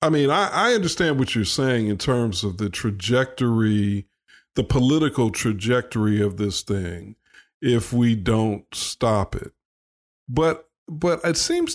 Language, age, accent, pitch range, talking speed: English, 50-69, American, 110-150 Hz, 145 wpm